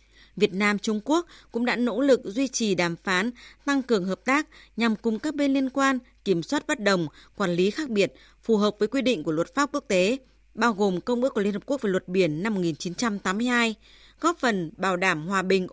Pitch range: 190-260 Hz